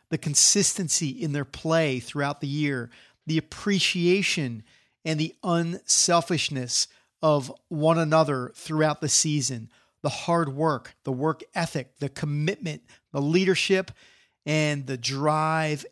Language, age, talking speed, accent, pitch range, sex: English, 40-59, 120 wpm, American, 145-180 Hz, male